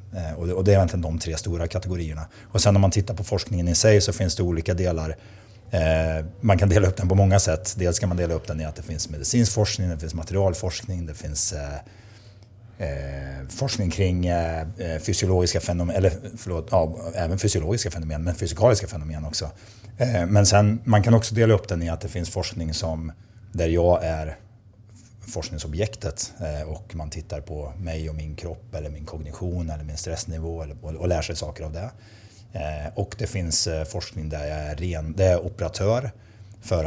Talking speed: 175 wpm